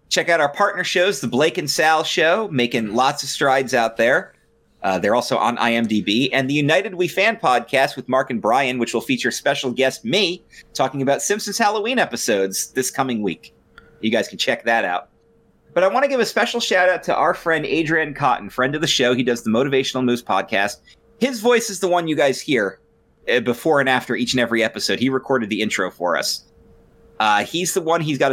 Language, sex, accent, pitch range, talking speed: English, male, American, 115-160 Hz, 215 wpm